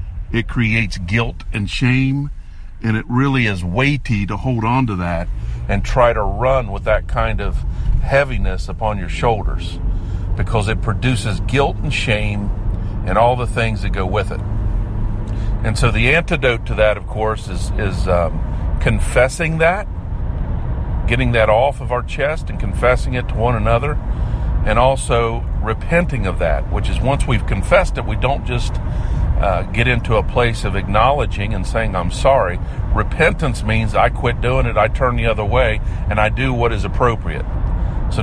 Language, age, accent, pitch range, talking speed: English, 50-69, American, 95-125 Hz, 170 wpm